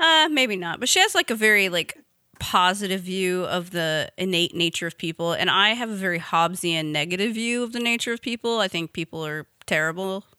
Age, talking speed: 30-49, 210 wpm